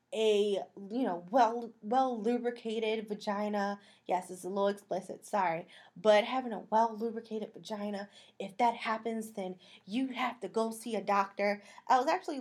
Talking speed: 165 wpm